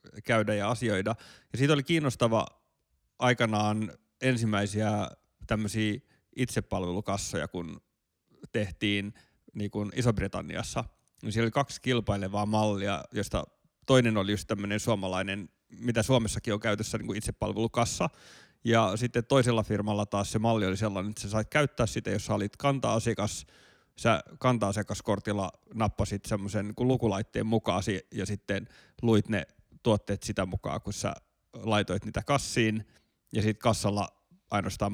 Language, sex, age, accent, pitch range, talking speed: Finnish, male, 30-49, native, 100-115 Hz, 130 wpm